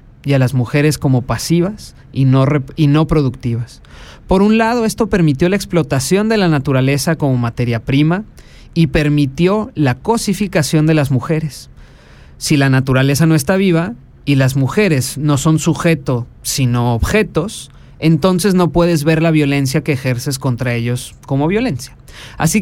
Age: 30-49